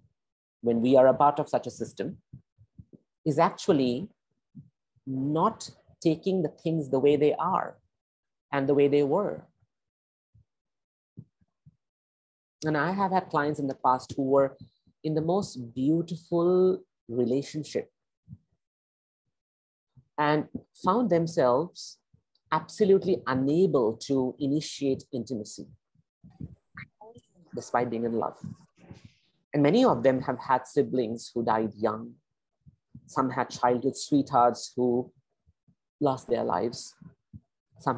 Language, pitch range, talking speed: English, 120-150 Hz, 110 wpm